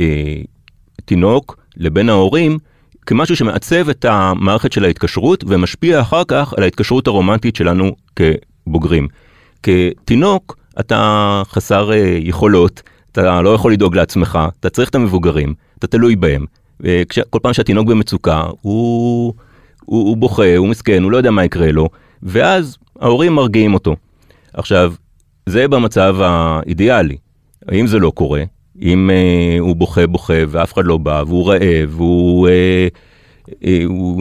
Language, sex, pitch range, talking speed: Hebrew, male, 85-115 Hz, 130 wpm